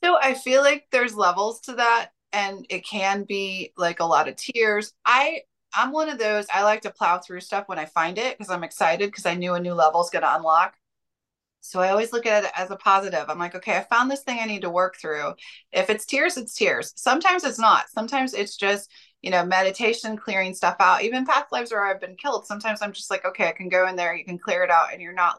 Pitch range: 185-230 Hz